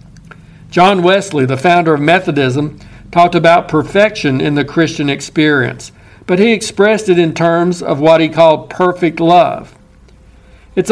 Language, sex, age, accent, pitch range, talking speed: English, male, 60-79, American, 155-190 Hz, 145 wpm